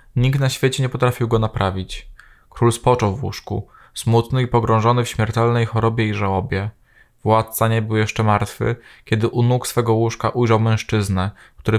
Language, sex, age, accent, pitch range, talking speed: Polish, male, 20-39, native, 105-120 Hz, 165 wpm